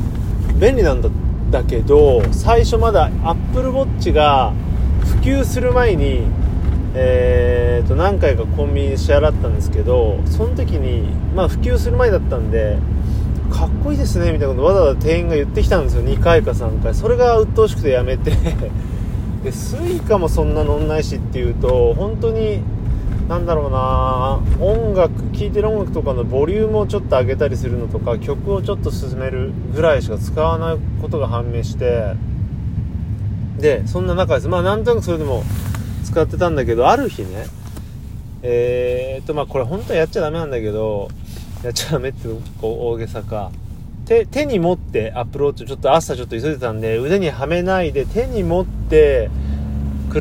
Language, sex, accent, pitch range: Japanese, male, native, 85-120 Hz